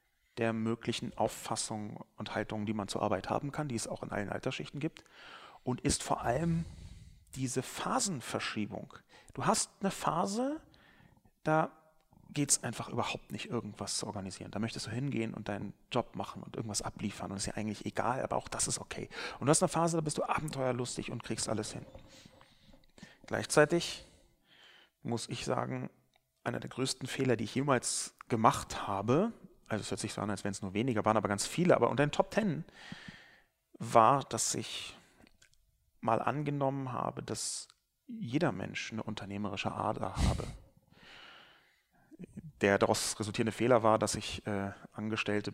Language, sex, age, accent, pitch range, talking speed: German, male, 40-59, German, 105-135 Hz, 165 wpm